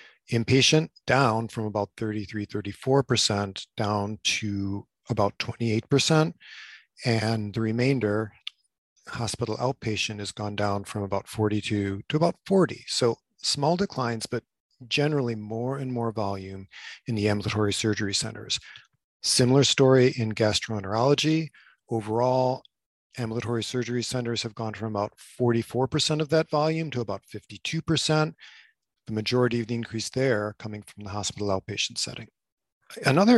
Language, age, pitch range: English, 50-69, 105-130 Hz